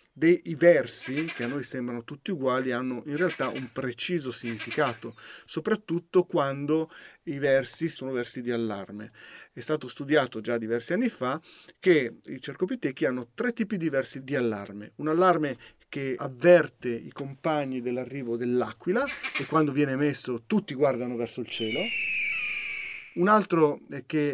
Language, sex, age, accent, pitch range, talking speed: Italian, male, 50-69, native, 125-170 Hz, 145 wpm